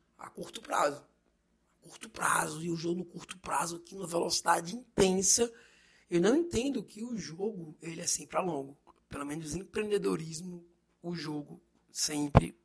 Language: Portuguese